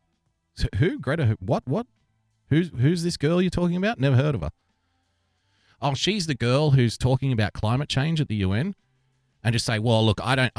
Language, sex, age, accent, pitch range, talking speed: English, male, 30-49, Australian, 100-135 Hz, 200 wpm